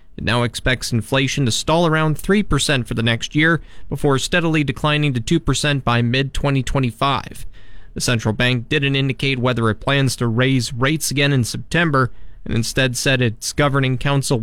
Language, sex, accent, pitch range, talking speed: English, male, American, 125-155 Hz, 160 wpm